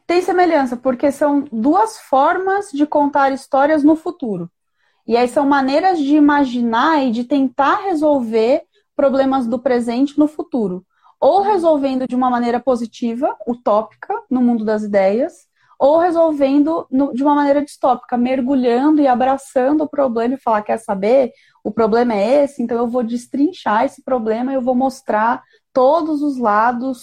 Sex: female